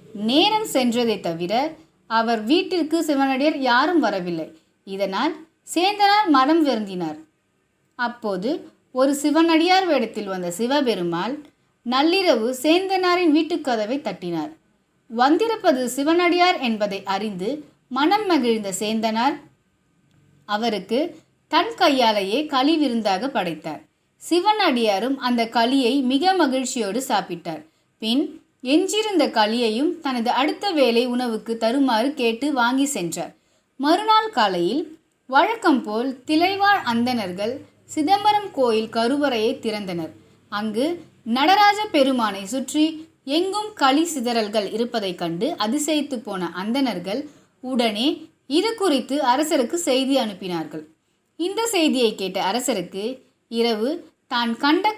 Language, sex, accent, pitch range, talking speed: Tamil, female, native, 215-315 Hz, 95 wpm